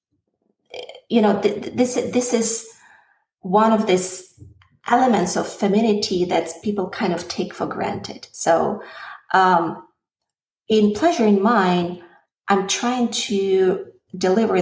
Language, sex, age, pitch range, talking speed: English, female, 30-49, 180-220 Hz, 120 wpm